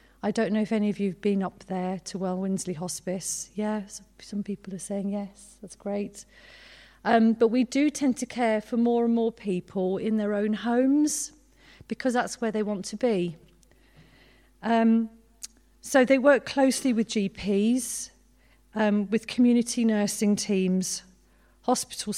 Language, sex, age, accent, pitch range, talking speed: English, female, 40-59, British, 185-225 Hz, 160 wpm